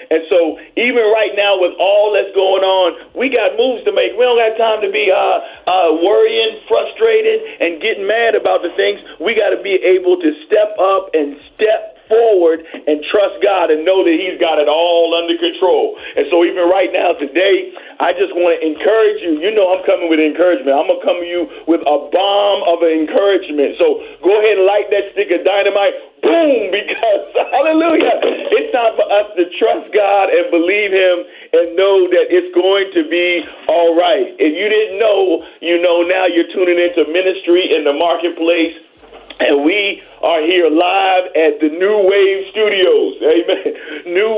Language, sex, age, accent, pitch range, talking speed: English, male, 50-69, American, 170-240 Hz, 185 wpm